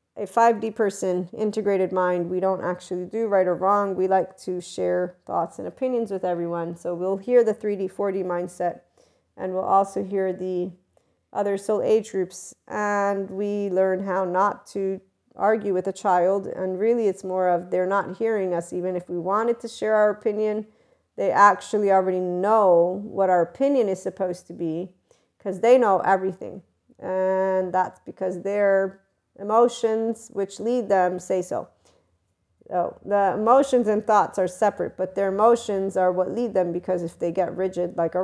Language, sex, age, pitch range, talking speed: English, female, 40-59, 185-215 Hz, 170 wpm